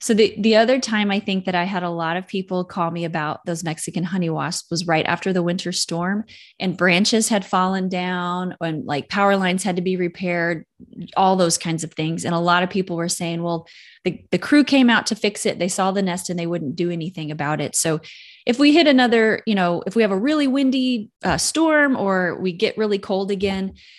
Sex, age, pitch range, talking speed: female, 20-39, 170-205 Hz, 235 wpm